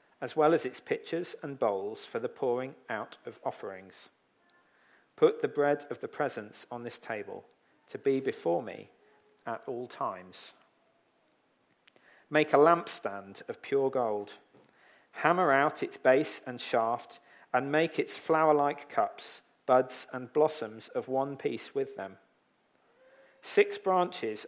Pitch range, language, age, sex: 120-155 Hz, English, 40-59, male